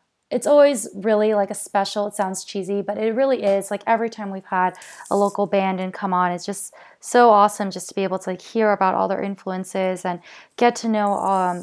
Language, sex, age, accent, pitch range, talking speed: English, female, 20-39, American, 180-205 Hz, 225 wpm